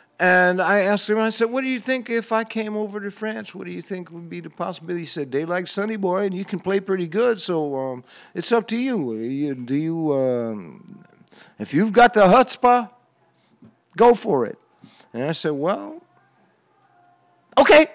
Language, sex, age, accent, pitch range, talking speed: English, male, 50-69, American, 135-205 Hz, 195 wpm